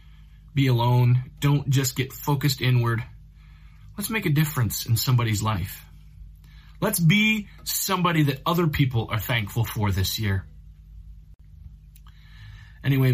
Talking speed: 120 wpm